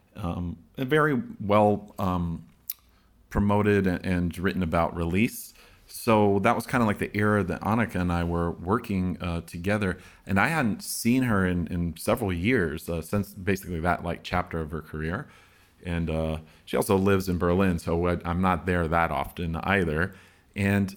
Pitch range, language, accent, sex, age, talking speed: 85-100 Hz, English, American, male, 30-49, 170 wpm